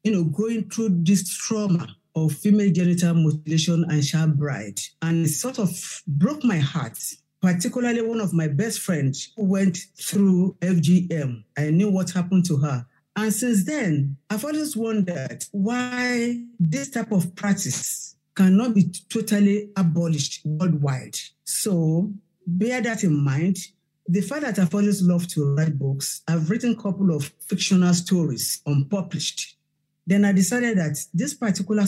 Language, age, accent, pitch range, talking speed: English, 50-69, Nigerian, 150-195 Hz, 150 wpm